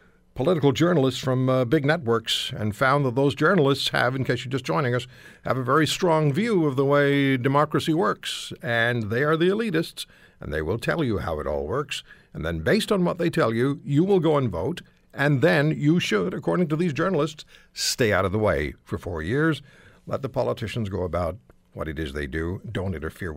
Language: English